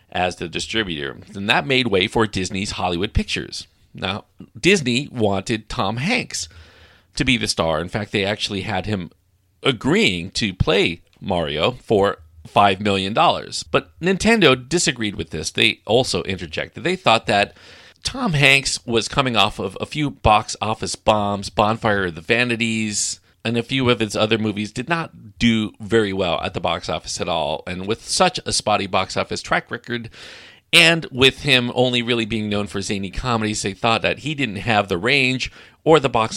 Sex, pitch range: male, 95-125 Hz